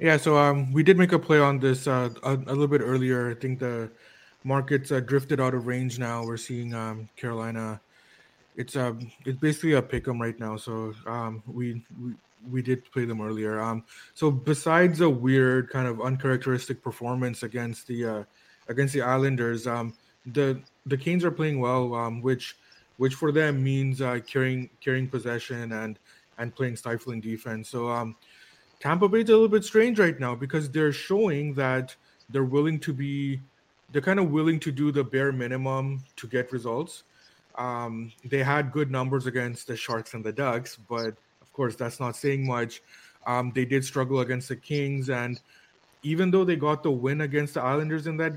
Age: 20-39